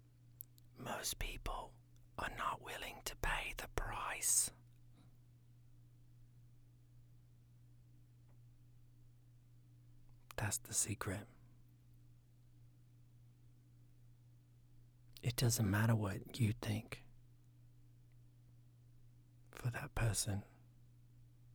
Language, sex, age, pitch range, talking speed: English, male, 40-59, 115-120 Hz, 60 wpm